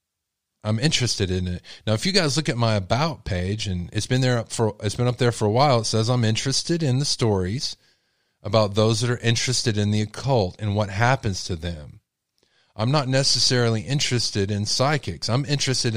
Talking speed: 200 wpm